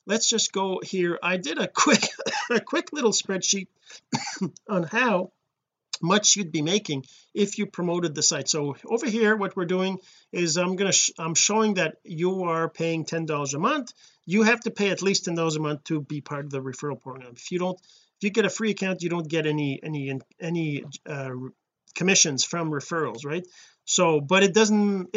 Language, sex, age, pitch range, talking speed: English, male, 40-59, 160-215 Hz, 205 wpm